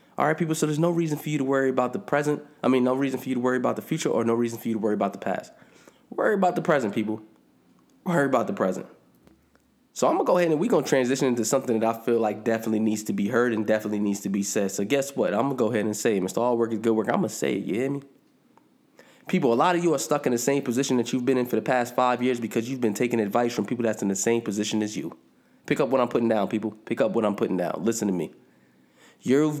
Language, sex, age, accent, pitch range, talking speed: English, male, 20-39, American, 115-150 Hz, 295 wpm